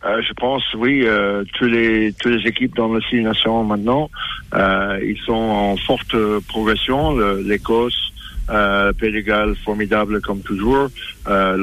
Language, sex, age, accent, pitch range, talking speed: French, male, 60-79, French, 100-115 Hz, 140 wpm